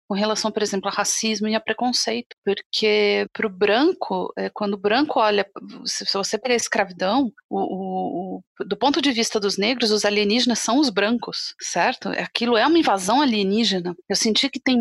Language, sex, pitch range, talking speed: Portuguese, female, 200-255 Hz, 175 wpm